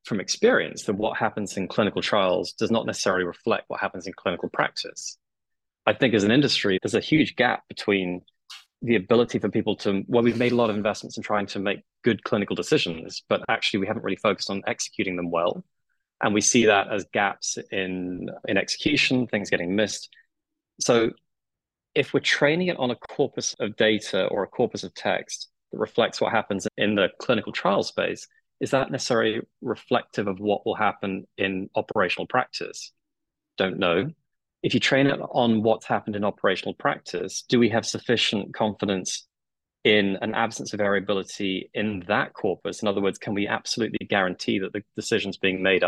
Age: 20-39